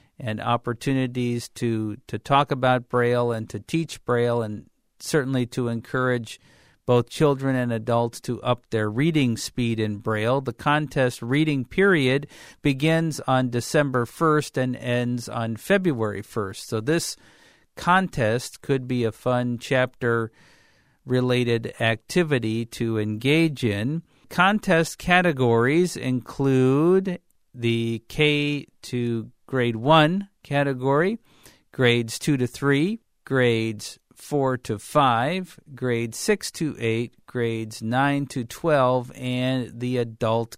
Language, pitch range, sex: English, 115-145 Hz, male